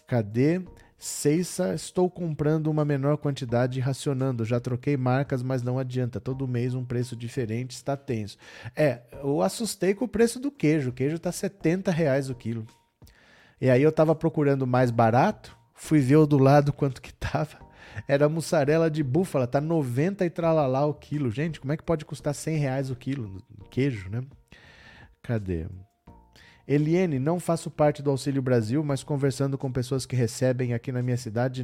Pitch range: 120-160 Hz